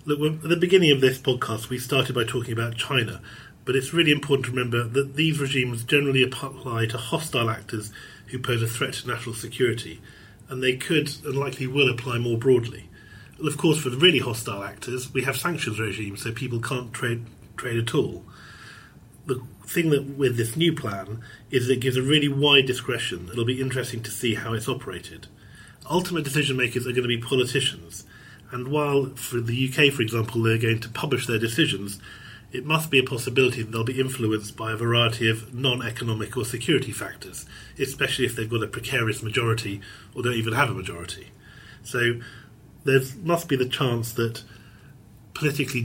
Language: English